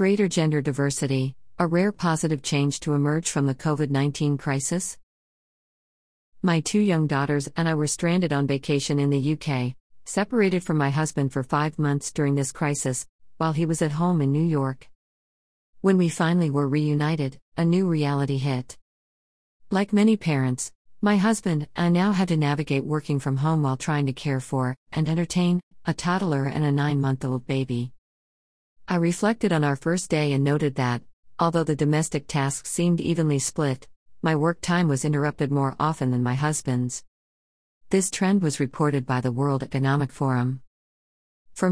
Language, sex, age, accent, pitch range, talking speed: English, female, 50-69, American, 135-170 Hz, 165 wpm